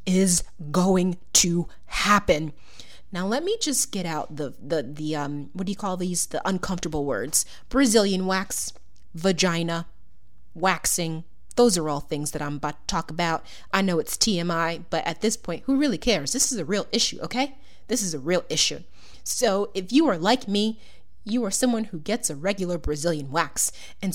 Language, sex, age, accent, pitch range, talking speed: English, female, 30-49, American, 160-240 Hz, 185 wpm